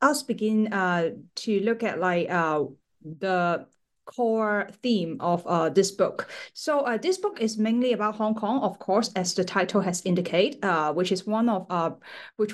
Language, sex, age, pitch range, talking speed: English, female, 30-49, 185-230 Hz, 180 wpm